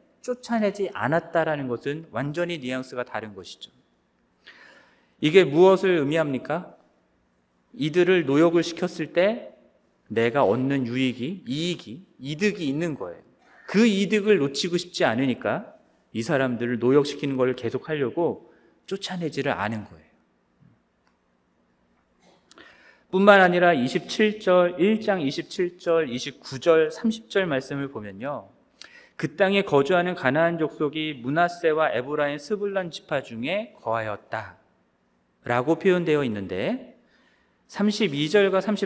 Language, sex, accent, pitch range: Korean, male, native, 130-180 Hz